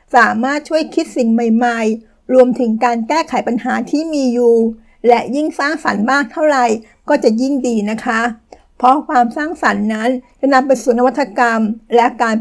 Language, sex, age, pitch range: Thai, female, 60-79, 230-270 Hz